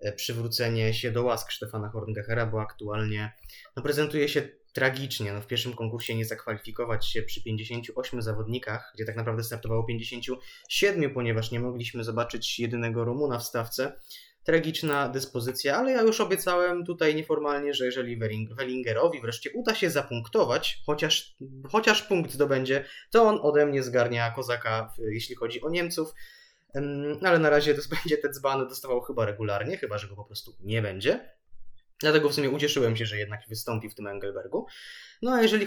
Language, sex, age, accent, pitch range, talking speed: Polish, male, 20-39, native, 115-155 Hz, 160 wpm